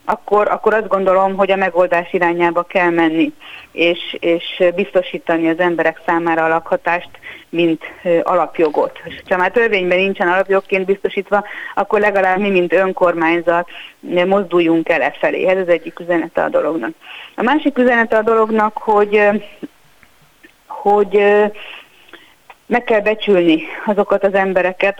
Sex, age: female, 30-49